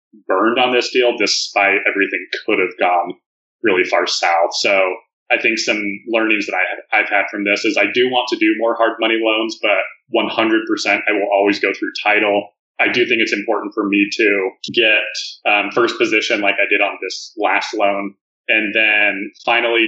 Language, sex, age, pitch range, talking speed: English, male, 30-49, 100-120 Hz, 185 wpm